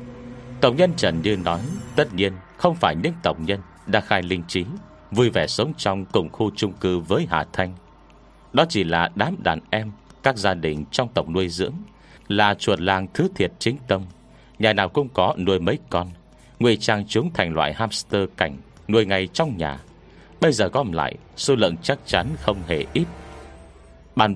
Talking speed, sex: 190 wpm, male